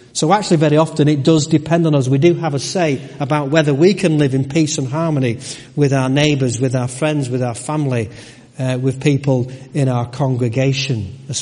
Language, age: English, 40-59